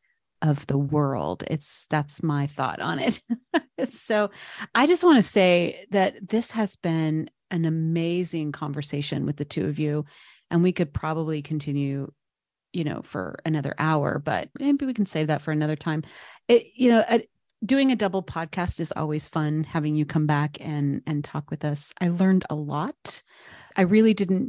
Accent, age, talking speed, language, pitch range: American, 30-49, 175 wpm, English, 150-190 Hz